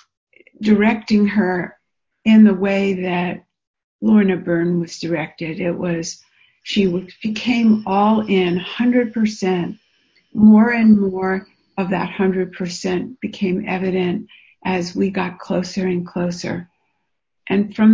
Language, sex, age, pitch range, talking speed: English, female, 60-79, 180-210 Hz, 110 wpm